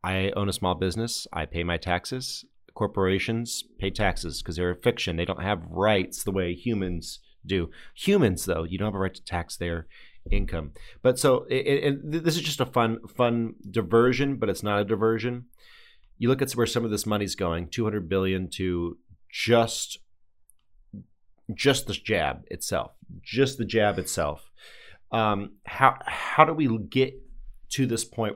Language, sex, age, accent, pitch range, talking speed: English, male, 30-49, American, 90-115 Hz, 170 wpm